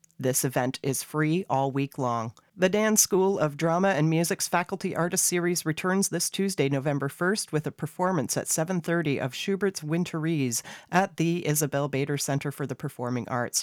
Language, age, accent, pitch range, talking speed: English, 40-59, American, 135-165 Hz, 170 wpm